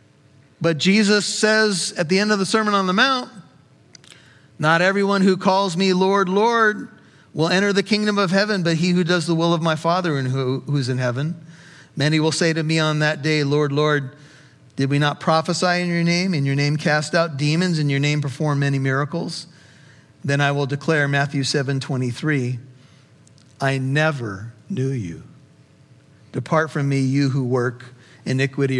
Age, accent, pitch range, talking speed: 50-69, American, 140-185 Hz, 180 wpm